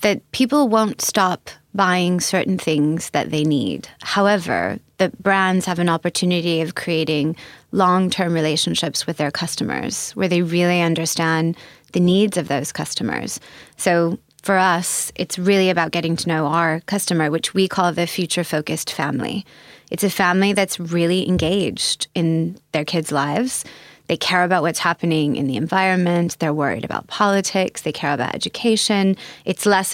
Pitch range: 160-195 Hz